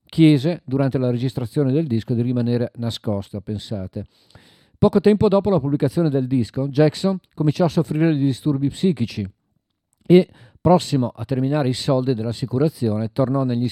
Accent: native